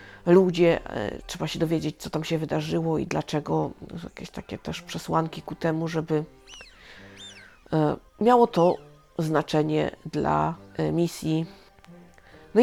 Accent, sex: native, female